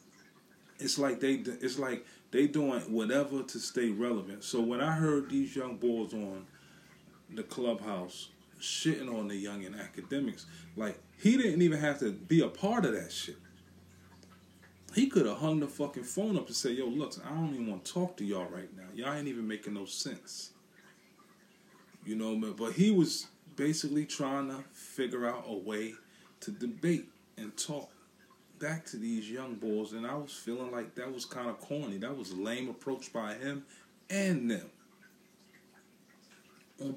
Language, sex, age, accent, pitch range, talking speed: English, male, 30-49, American, 115-165 Hz, 180 wpm